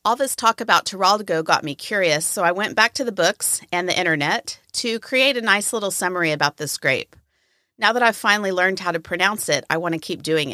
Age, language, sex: 40-59, English, female